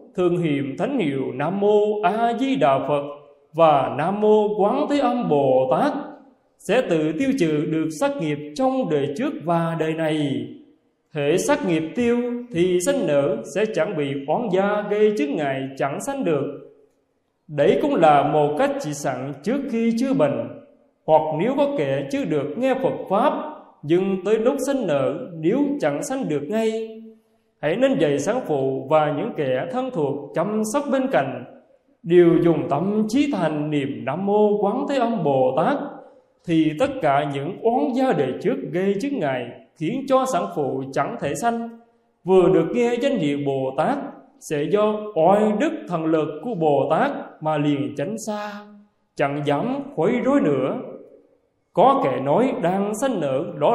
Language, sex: Vietnamese, male